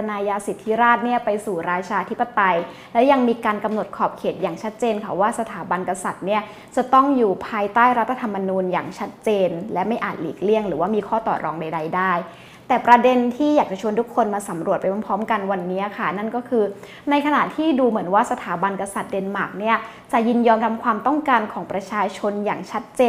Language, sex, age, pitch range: Thai, female, 20-39, 200-240 Hz